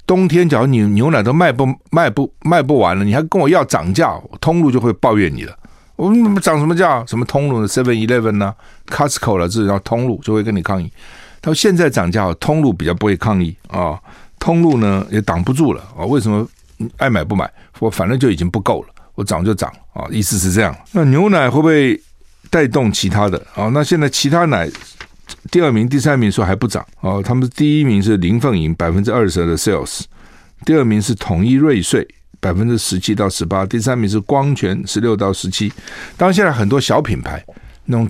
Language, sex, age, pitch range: Chinese, male, 50-69, 95-140 Hz